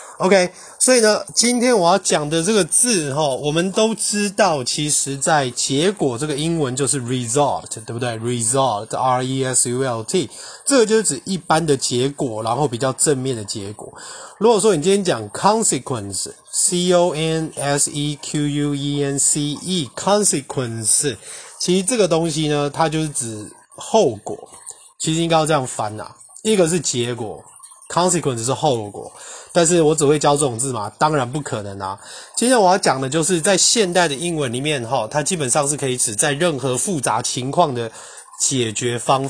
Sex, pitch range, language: male, 130-175 Hz, Chinese